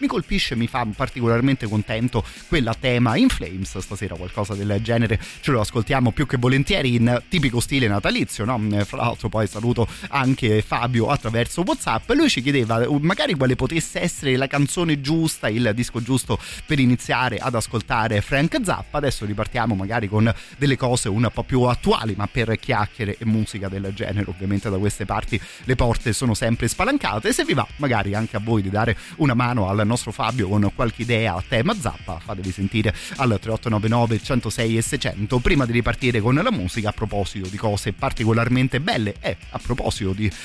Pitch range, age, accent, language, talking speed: 105-125 Hz, 30-49, native, Italian, 185 wpm